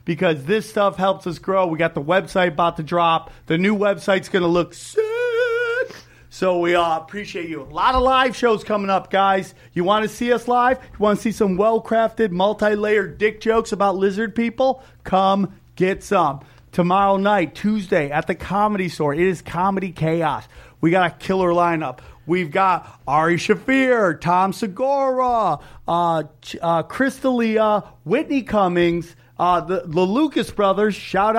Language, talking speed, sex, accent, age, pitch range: English, 165 wpm, male, American, 40-59, 170-210 Hz